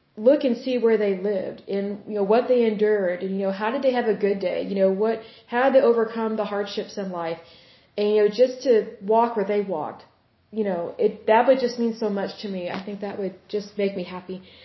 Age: 20-39